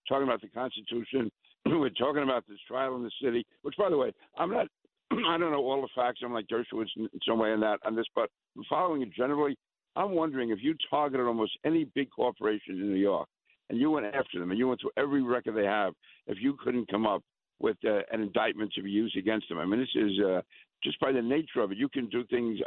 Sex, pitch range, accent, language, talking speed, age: male, 110-140 Hz, American, English, 245 wpm, 60-79